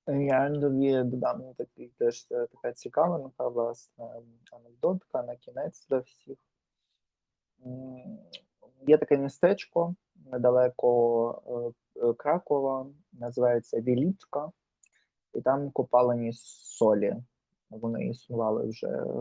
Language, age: Ukrainian, 20-39